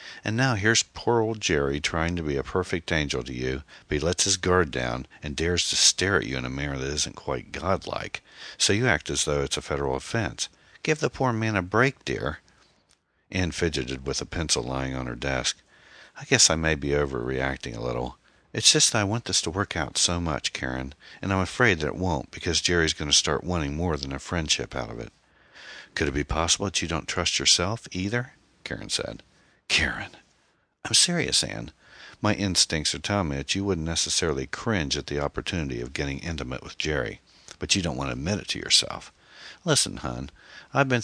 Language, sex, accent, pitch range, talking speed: English, male, American, 70-95 Hz, 210 wpm